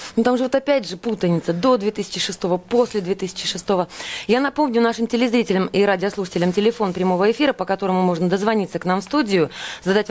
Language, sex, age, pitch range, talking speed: Russian, female, 20-39, 185-240 Hz, 170 wpm